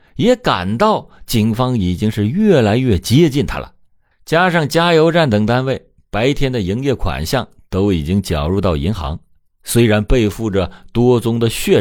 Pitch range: 90-140 Hz